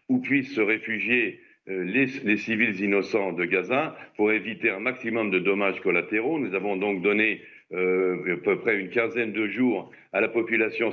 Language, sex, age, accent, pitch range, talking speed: French, male, 50-69, French, 100-120 Hz, 175 wpm